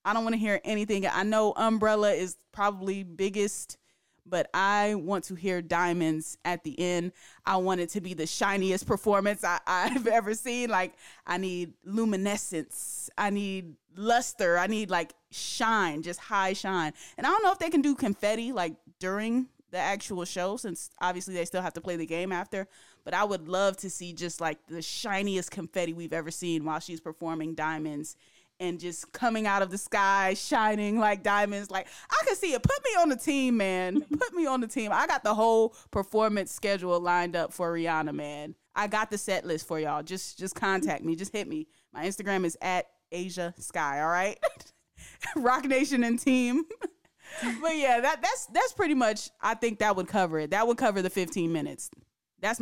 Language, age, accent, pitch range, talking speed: English, 20-39, American, 175-220 Hz, 195 wpm